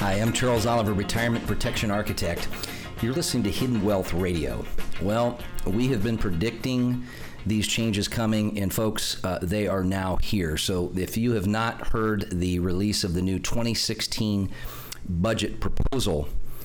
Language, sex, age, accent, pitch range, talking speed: English, male, 40-59, American, 90-110 Hz, 150 wpm